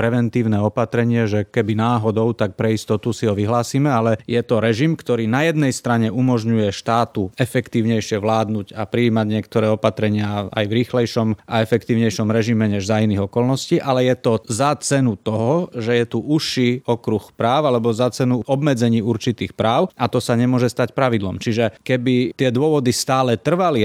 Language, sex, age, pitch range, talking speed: Slovak, male, 30-49, 110-125 Hz, 170 wpm